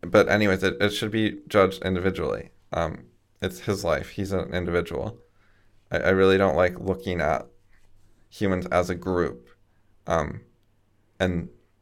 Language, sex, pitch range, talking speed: English, male, 90-105 Hz, 140 wpm